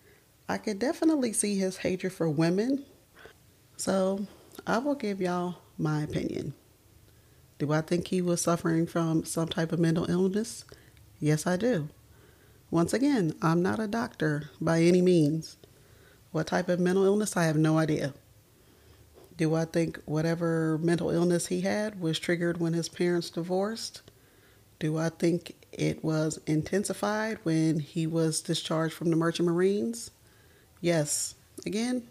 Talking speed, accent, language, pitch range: 145 wpm, American, English, 155-180 Hz